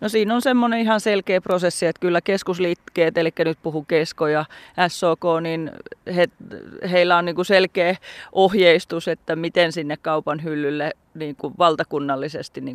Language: Finnish